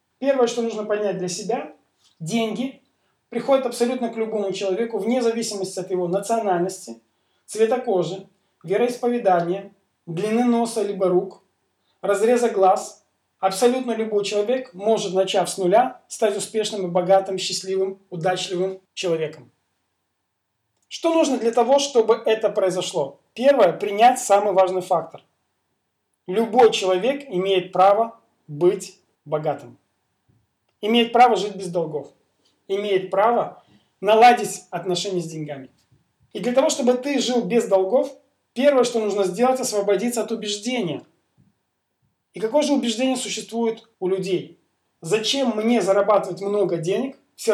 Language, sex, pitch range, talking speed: Russian, male, 185-235 Hz, 120 wpm